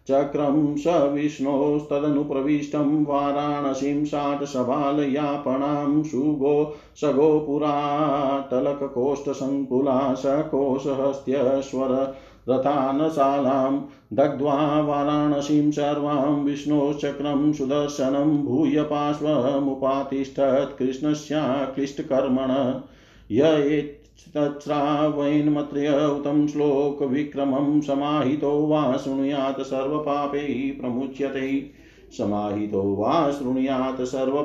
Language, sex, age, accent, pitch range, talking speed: Hindi, male, 50-69, native, 135-150 Hz, 35 wpm